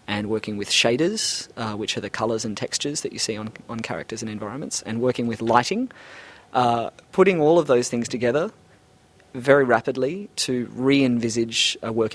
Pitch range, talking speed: 110-130 Hz, 180 wpm